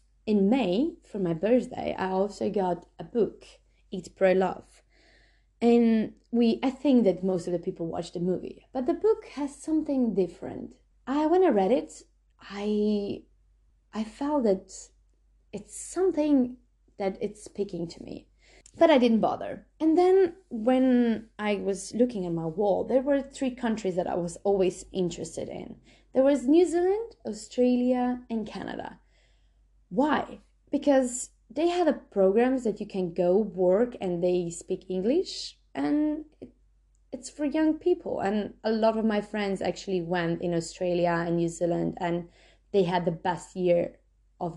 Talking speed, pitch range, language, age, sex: 155 wpm, 185-275 Hz, English, 20-39, female